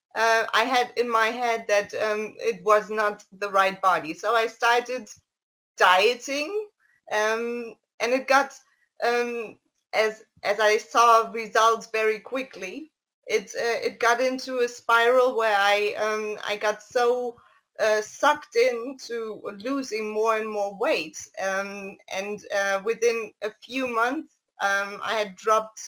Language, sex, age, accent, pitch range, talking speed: English, female, 20-39, German, 210-245 Hz, 145 wpm